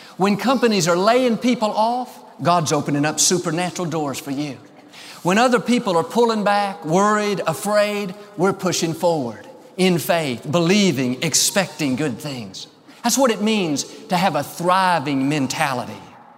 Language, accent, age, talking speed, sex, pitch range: English, American, 50-69, 145 wpm, male, 160-210 Hz